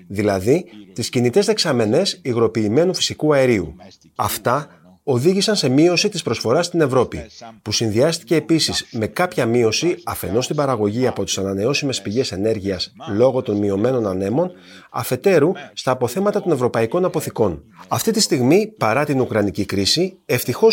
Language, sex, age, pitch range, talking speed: Greek, male, 30-49, 105-165 Hz, 135 wpm